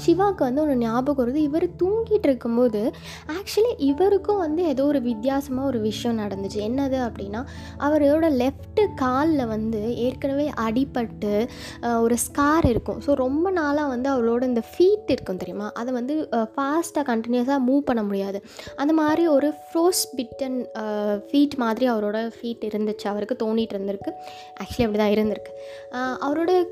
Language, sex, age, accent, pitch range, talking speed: Tamil, female, 20-39, native, 230-300 Hz, 140 wpm